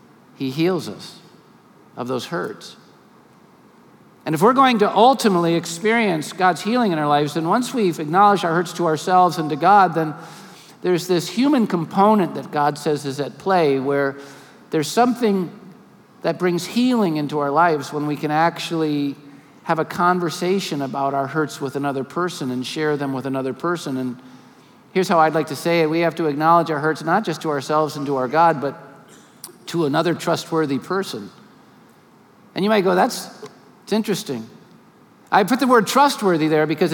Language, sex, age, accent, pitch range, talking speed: English, male, 50-69, American, 155-195 Hz, 175 wpm